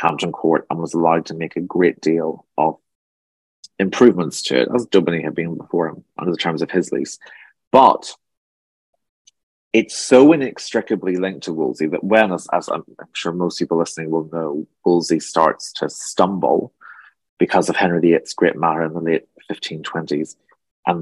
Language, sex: English, male